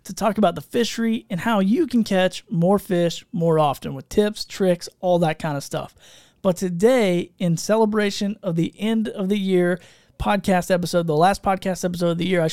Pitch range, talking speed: 170-220 Hz, 200 wpm